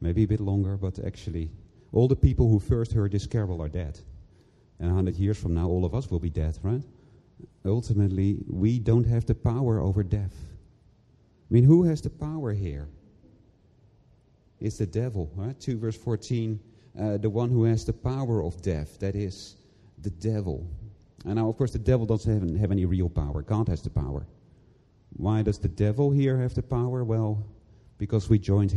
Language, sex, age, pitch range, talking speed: English, male, 40-59, 95-115 Hz, 190 wpm